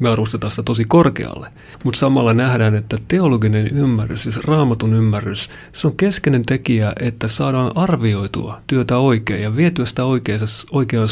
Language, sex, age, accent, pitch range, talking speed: Finnish, male, 40-59, native, 110-140 Hz, 145 wpm